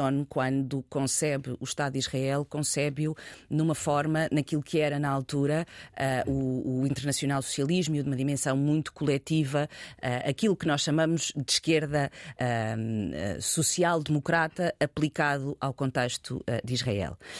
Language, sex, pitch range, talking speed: Portuguese, female, 130-165 Hz, 120 wpm